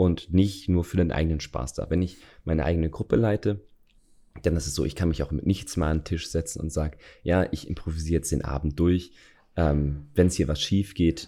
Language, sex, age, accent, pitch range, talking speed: German, male, 30-49, German, 75-90 Hz, 240 wpm